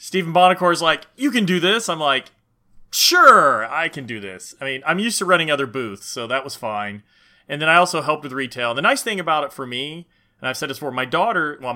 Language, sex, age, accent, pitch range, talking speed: English, male, 30-49, American, 125-170 Hz, 250 wpm